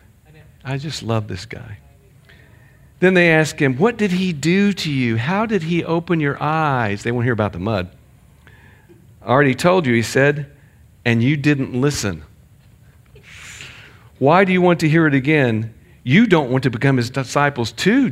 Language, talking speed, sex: English, 175 wpm, male